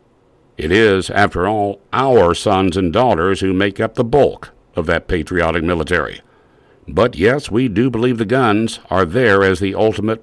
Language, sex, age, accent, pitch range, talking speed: English, male, 60-79, American, 90-115 Hz, 170 wpm